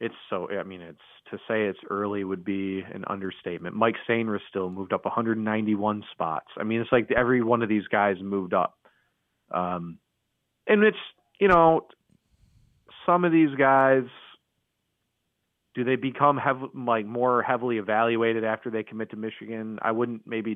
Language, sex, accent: English, male, American